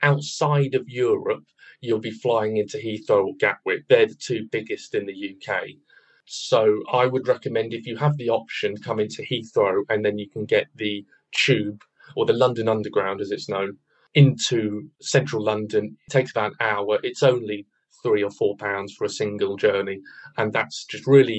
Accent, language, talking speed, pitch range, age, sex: British, English, 180 wpm, 110-155 Hz, 20-39, male